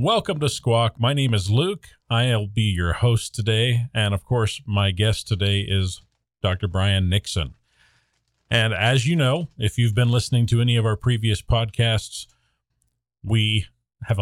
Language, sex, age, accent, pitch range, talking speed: English, male, 40-59, American, 100-120 Hz, 160 wpm